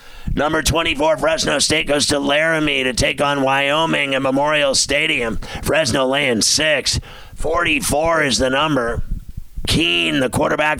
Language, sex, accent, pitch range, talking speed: English, male, American, 140-165 Hz, 135 wpm